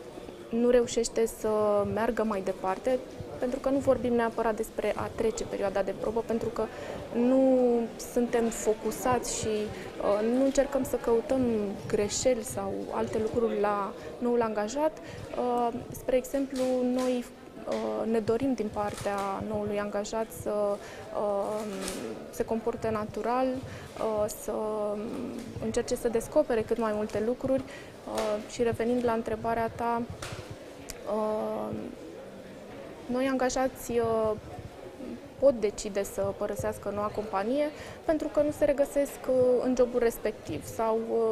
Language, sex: Romanian, female